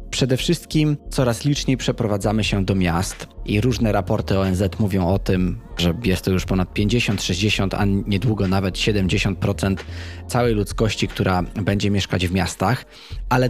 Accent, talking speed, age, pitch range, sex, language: native, 145 wpm, 20-39, 95-115 Hz, male, Polish